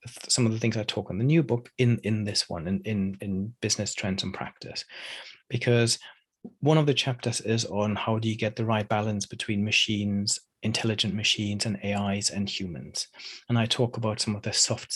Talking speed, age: 205 wpm, 30-49